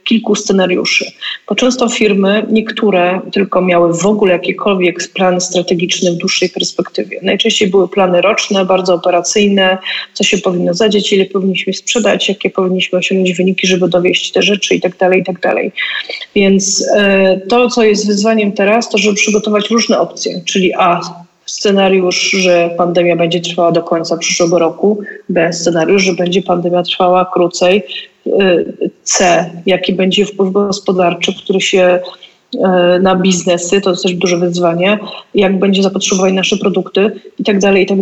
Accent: native